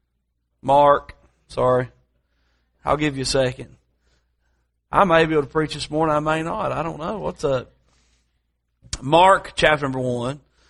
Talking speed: 150 wpm